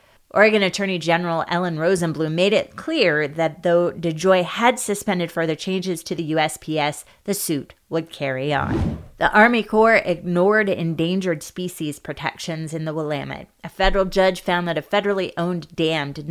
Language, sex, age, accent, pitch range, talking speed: English, female, 30-49, American, 160-190 Hz, 160 wpm